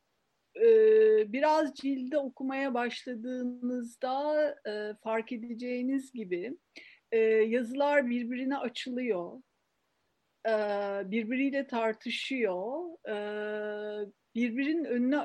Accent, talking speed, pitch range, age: native, 55 wpm, 210-295 Hz, 50-69